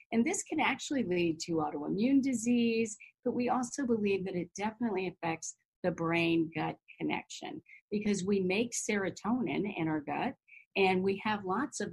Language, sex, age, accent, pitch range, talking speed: English, female, 40-59, American, 170-230 Hz, 155 wpm